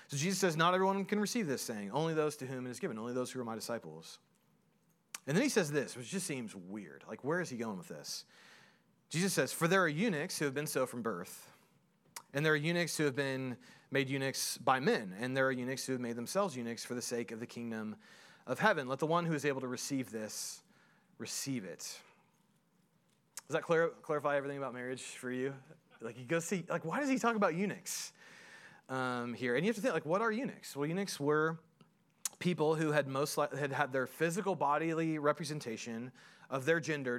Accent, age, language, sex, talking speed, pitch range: American, 30-49, English, male, 210 wpm, 125-165 Hz